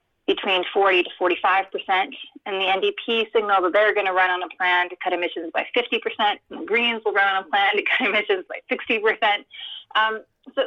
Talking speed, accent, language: 200 wpm, American, English